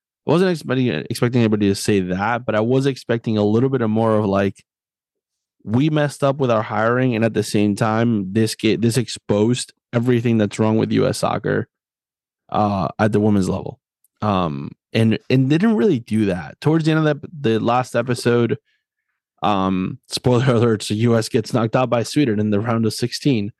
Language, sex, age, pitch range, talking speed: English, male, 20-39, 110-135 Hz, 195 wpm